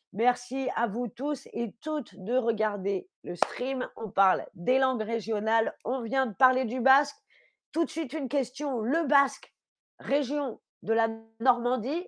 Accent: French